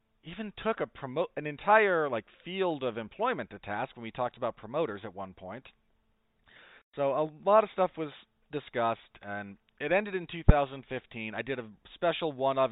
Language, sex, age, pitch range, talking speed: English, male, 30-49, 110-145 Hz, 180 wpm